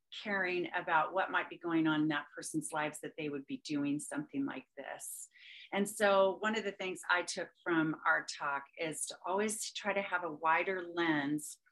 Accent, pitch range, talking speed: American, 155-200 Hz, 200 wpm